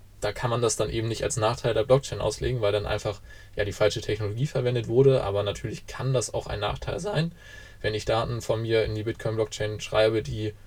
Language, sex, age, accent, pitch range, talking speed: German, male, 20-39, German, 105-130 Hz, 215 wpm